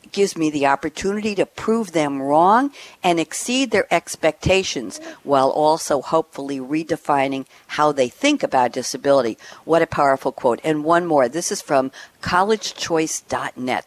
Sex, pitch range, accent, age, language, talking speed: female, 145-200 Hz, American, 60-79, English, 140 wpm